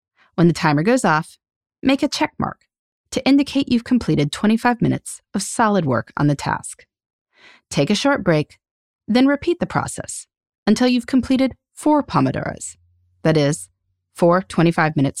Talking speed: 150 wpm